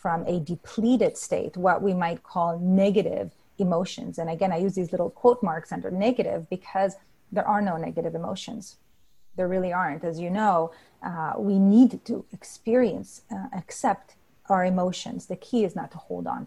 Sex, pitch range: female, 165-205 Hz